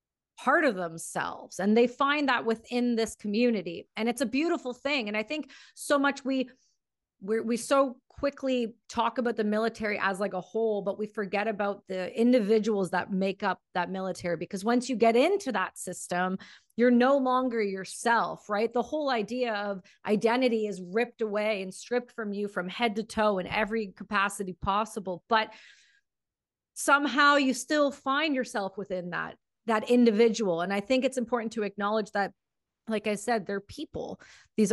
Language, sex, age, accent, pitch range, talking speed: English, female, 30-49, American, 190-245 Hz, 170 wpm